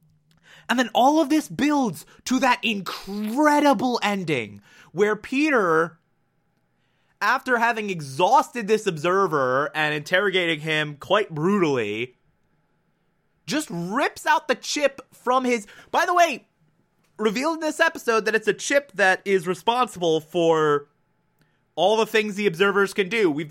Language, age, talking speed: English, 20-39, 135 wpm